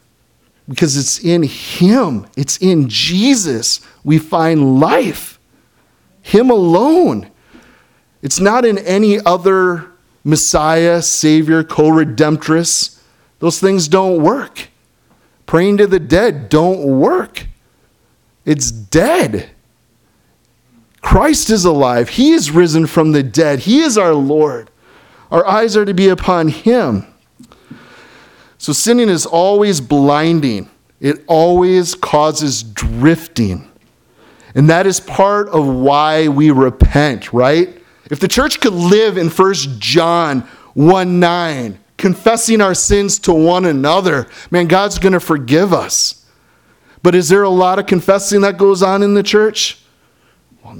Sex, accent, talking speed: male, American, 125 wpm